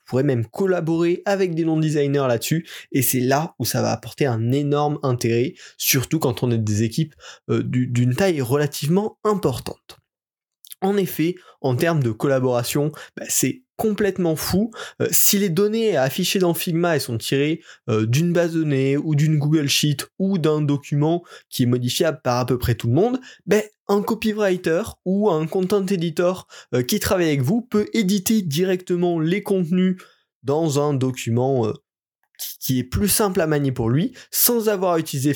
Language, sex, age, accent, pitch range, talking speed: French, male, 20-39, French, 130-180 Hz, 175 wpm